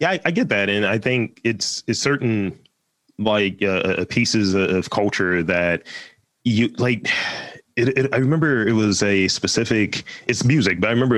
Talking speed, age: 185 wpm, 30-49